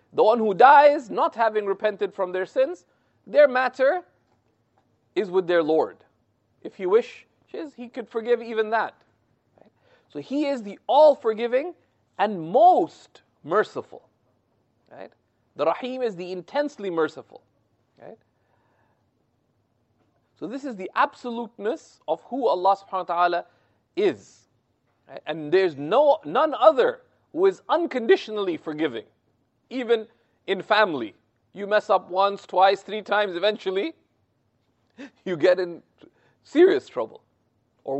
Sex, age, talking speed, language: male, 40-59, 120 wpm, English